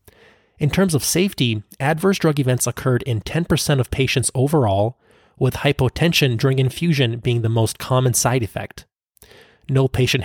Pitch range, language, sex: 110-140 Hz, English, male